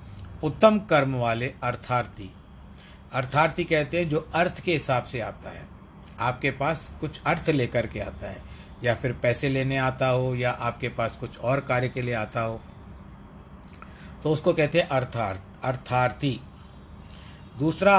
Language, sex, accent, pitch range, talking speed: Hindi, male, native, 95-150 Hz, 150 wpm